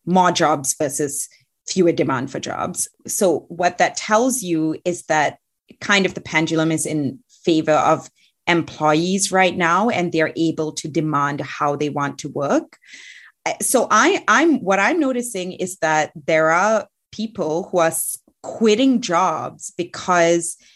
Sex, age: female, 30-49